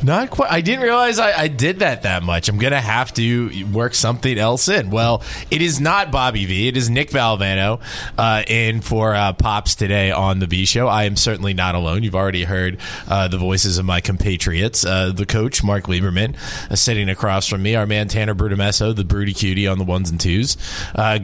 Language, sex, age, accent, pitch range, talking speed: English, male, 20-39, American, 90-115 Hz, 220 wpm